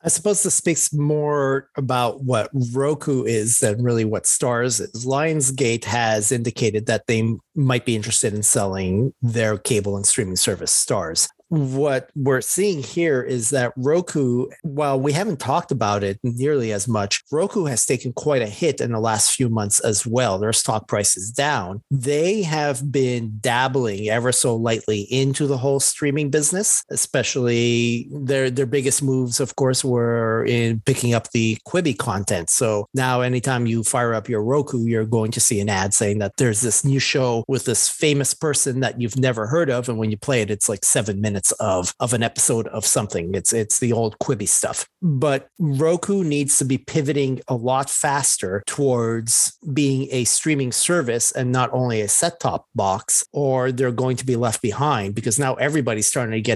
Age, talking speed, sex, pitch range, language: 40-59, 185 wpm, male, 115-140 Hz, English